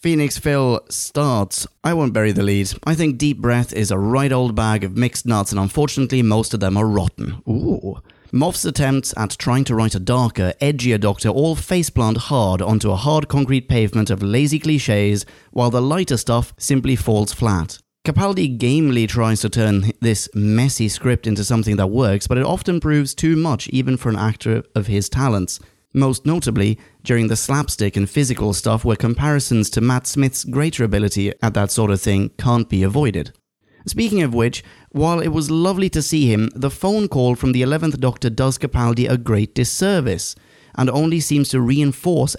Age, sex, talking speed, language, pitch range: 30-49, male, 185 wpm, English, 105-140 Hz